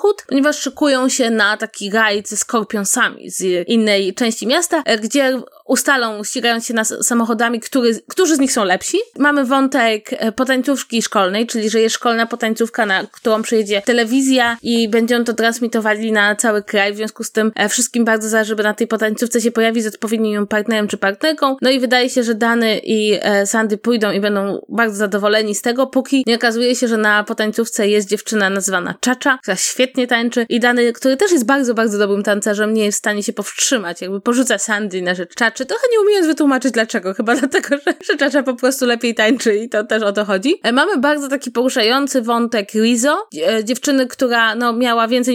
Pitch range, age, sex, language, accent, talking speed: 220-260 Hz, 20-39, female, Polish, native, 190 wpm